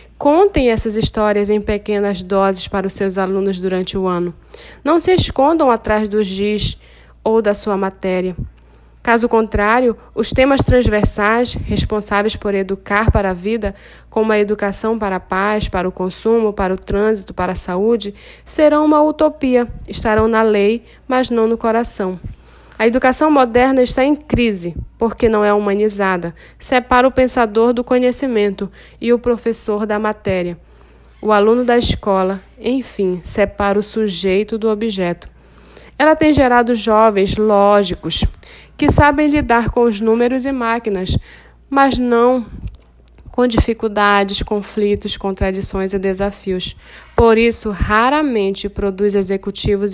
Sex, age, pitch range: female, 10-29, 195-235 Hz